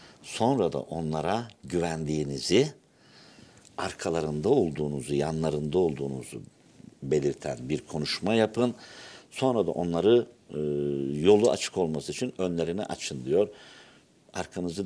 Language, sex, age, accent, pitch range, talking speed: Turkish, male, 60-79, native, 75-105 Hz, 95 wpm